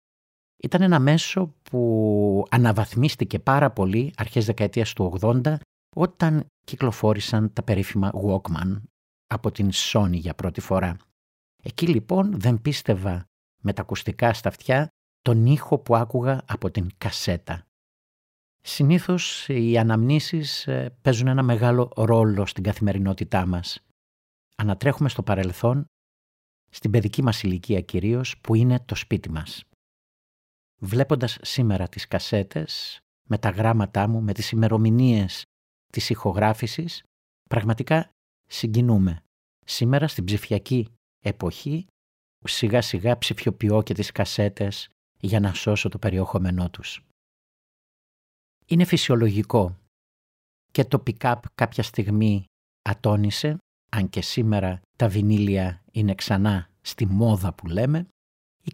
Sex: male